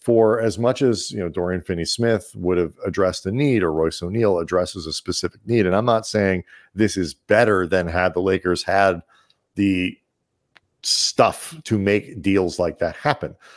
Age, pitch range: 40-59, 95-120 Hz